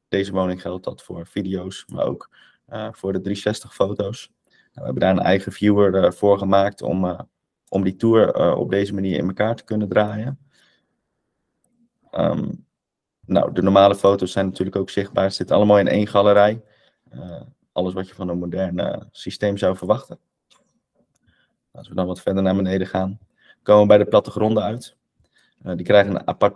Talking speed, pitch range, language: 185 wpm, 95-105 Hz, Dutch